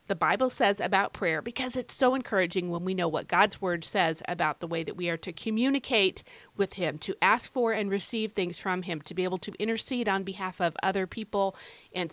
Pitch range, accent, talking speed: 185-245 Hz, American, 225 wpm